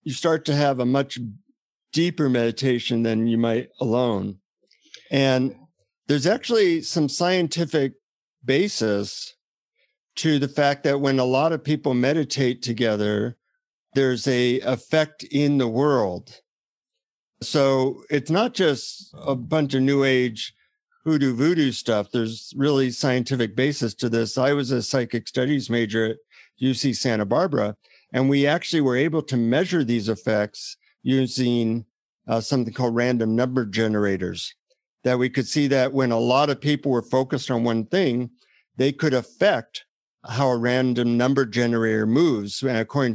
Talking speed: 145 wpm